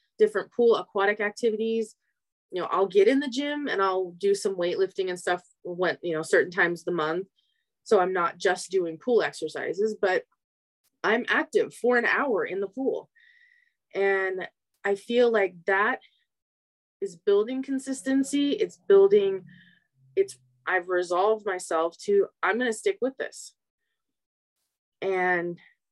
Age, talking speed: 20-39, 150 wpm